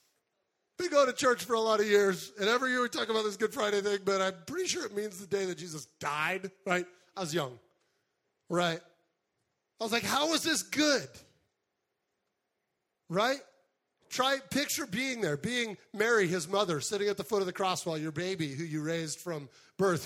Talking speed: 195 wpm